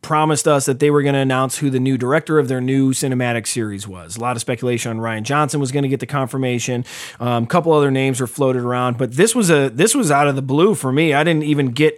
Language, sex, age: English, male, 30-49